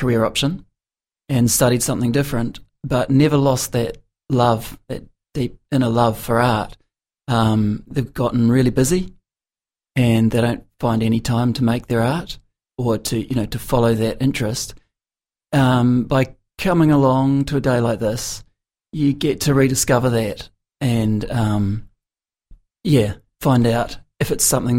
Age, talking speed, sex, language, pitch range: 30-49, 150 wpm, male, English, 115-135 Hz